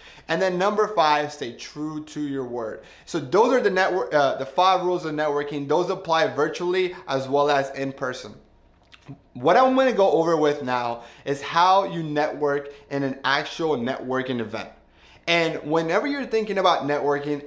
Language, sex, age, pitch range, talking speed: English, male, 20-39, 140-180 Hz, 175 wpm